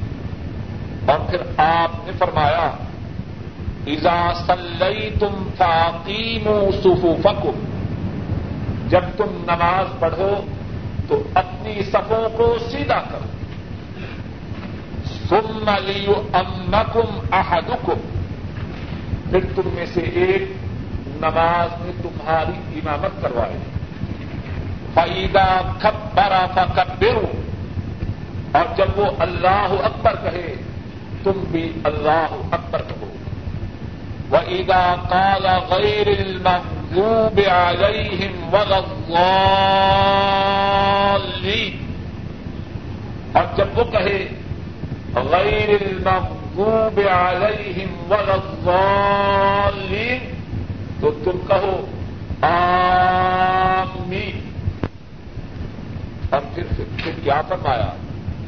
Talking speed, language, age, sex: 70 wpm, Urdu, 50-69, male